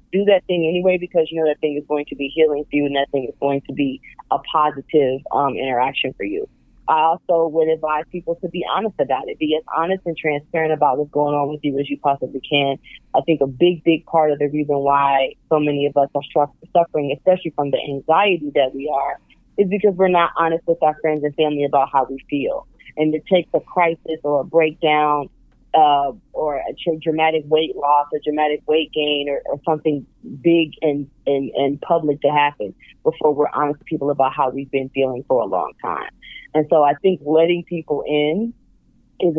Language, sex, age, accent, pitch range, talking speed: English, female, 30-49, American, 140-160 Hz, 215 wpm